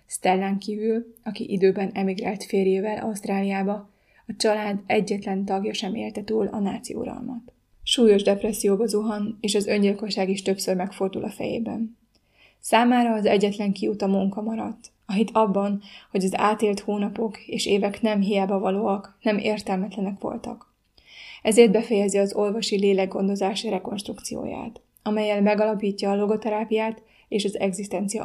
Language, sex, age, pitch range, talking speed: Hungarian, female, 20-39, 195-220 Hz, 130 wpm